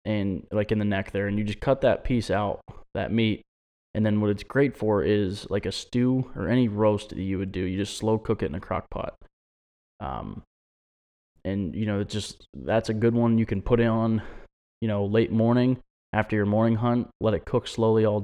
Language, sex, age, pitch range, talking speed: English, male, 20-39, 95-110 Hz, 225 wpm